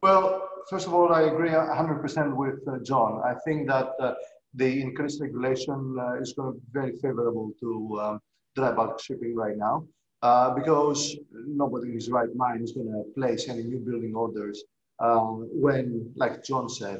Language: English